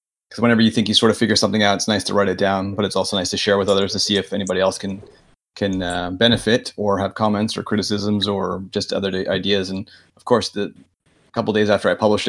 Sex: male